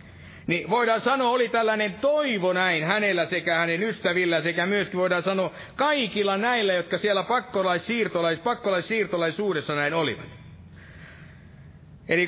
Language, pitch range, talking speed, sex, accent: Finnish, 180-240 Hz, 120 wpm, male, native